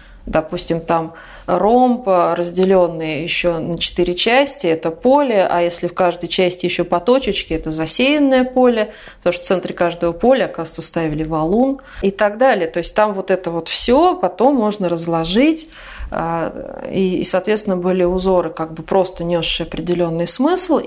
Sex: female